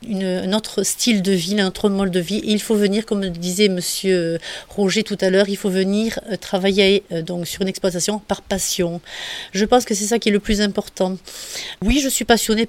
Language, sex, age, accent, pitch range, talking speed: French, female, 40-59, French, 190-220 Hz, 210 wpm